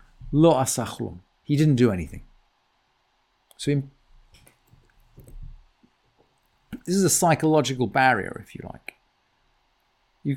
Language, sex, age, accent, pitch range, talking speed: English, male, 50-69, British, 125-175 Hz, 85 wpm